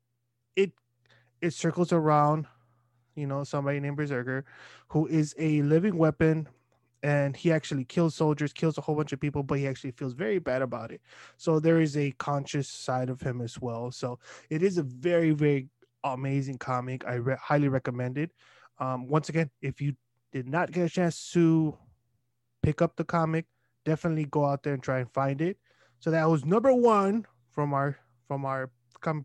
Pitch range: 130-165 Hz